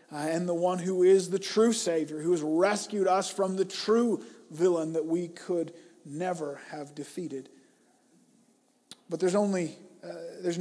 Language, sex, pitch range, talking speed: English, male, 175-215 Hz, 160 wpm